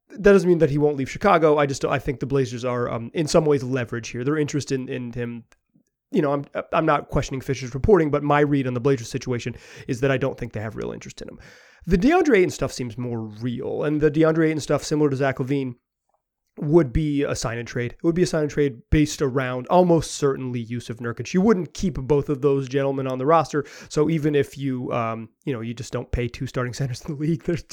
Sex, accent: male, American